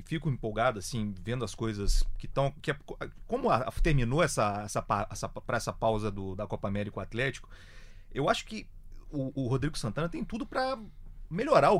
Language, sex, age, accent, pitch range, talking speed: Portuguese, male, 30-49, Brazilian, 100-140 Hz, 195 wpm